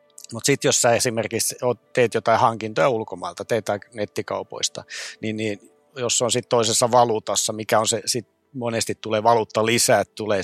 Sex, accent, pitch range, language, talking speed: male, native, 105-120 Hz, Finnish, 160 wpm